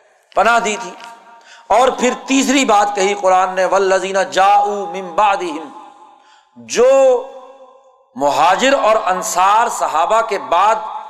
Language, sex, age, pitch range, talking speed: Urdu, male, 50-69, 185-255 Hz, 110 wpm